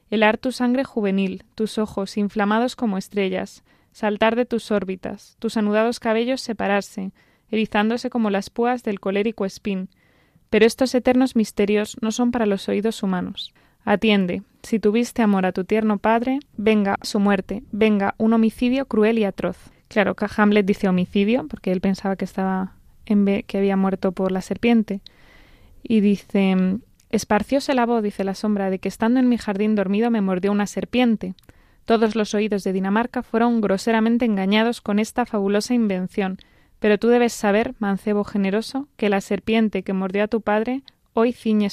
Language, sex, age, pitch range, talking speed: Spanish, female, 20-39, 200-230 Hz, 165 wpm